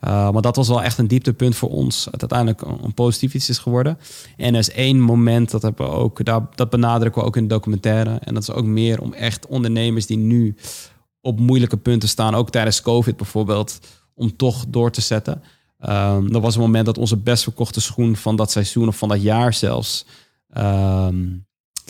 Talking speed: 210 wpm